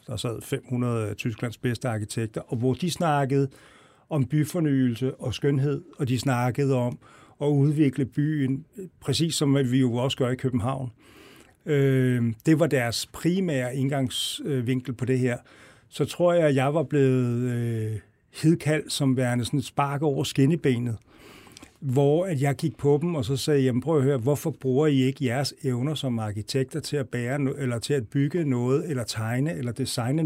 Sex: male